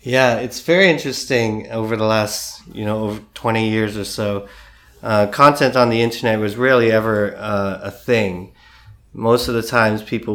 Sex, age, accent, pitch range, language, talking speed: male, 30-49, American, 100-115 Hz, English, 175 wpm